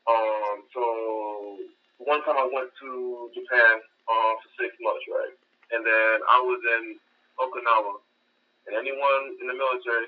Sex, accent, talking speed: male, American, 145 wpm